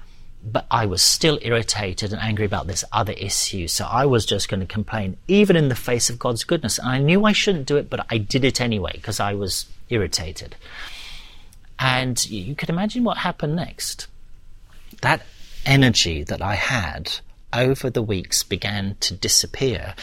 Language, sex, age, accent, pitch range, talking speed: English, male, 40-59, British, 100-130 Hz, 175 wpm